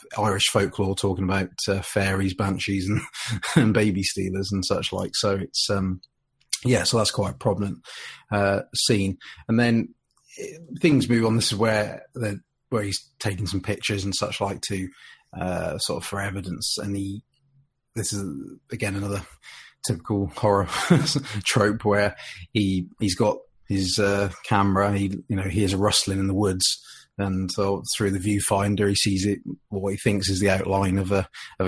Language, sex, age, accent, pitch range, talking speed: English, male, 30-49, British, 95-110 Hz, 170 wpm